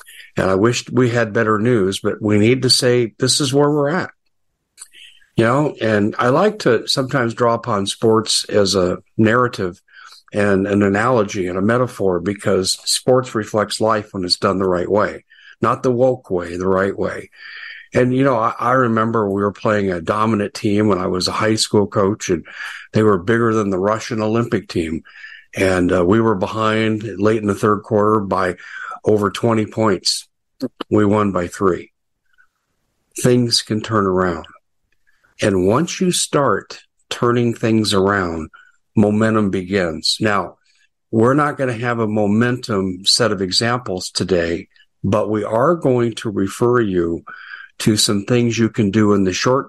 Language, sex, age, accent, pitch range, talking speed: English, male, 50-69, American, 95-120 Hz, 170 wpm